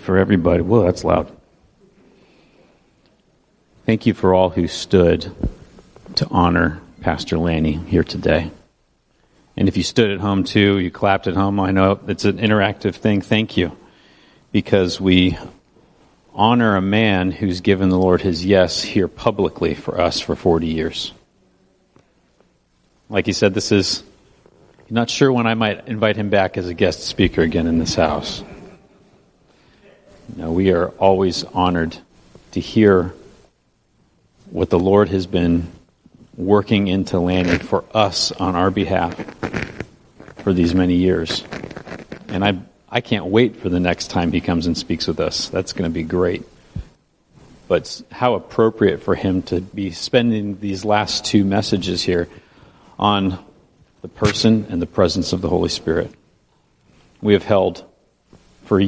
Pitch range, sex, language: 85-105 Hz, male, English